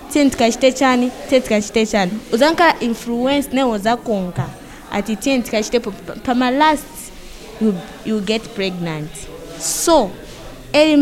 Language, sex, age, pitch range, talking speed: English, female, 20-39, 215-275 Hz, 95 wpm